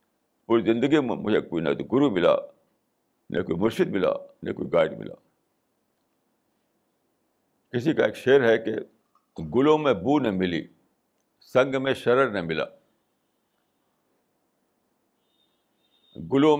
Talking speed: 125 wpm